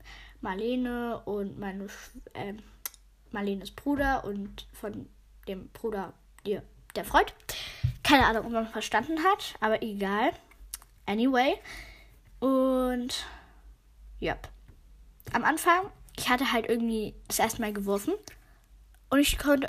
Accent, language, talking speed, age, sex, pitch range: German, German, 115 wpm, 10-29, female, 215-260 Hz